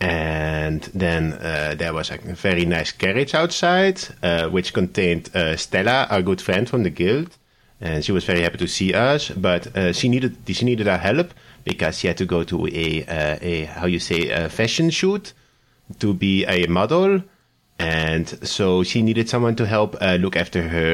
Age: 30-49